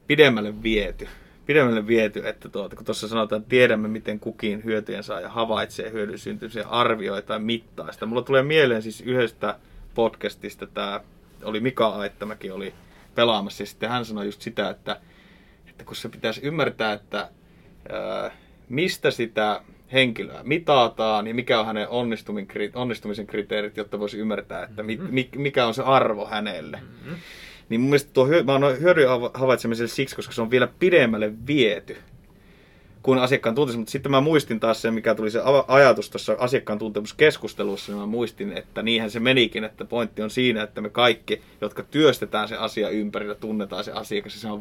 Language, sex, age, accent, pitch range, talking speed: Finnish, male, 30-49, native, 105-125 Hz, 155 wpm